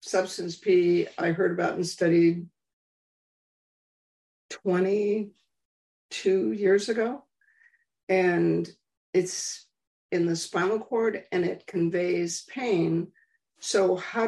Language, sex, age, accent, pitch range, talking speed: English, female, 50-69, American, 170-260 Hz, 95 wpm